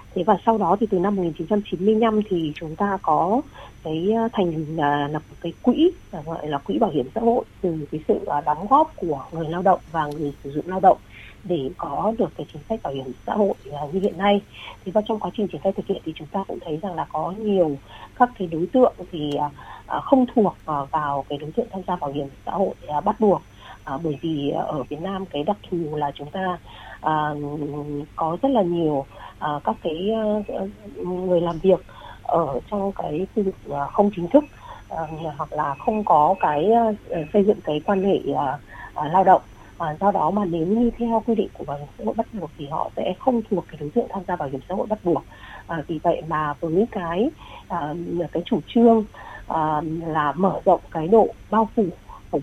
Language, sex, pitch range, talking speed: Vietnamese, female, 150-210 Hz, 200 wpm